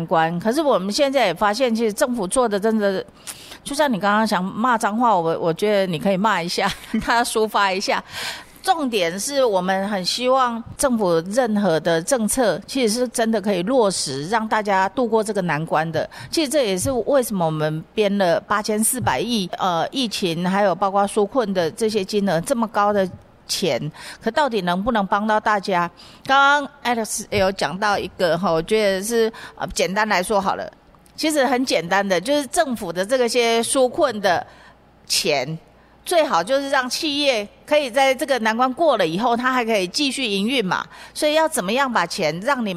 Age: 40-59